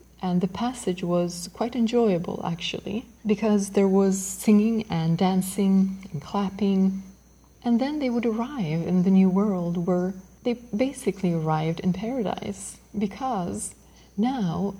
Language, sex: English, female